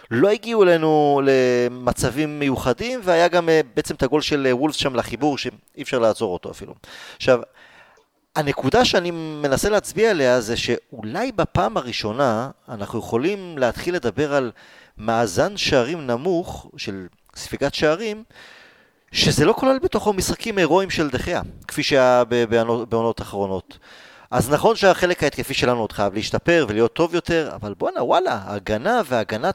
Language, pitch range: Hebrew, 125-180 Hz